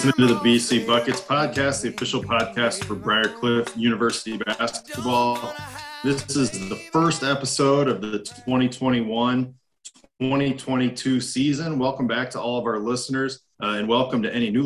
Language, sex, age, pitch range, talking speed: English, male, 20-39, 110-135 Hz, 145 wpm